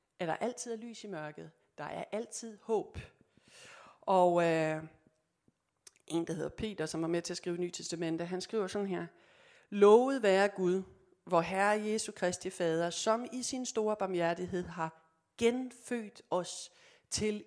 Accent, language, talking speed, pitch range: native, Danish, 160 wpm, 165-220 Hz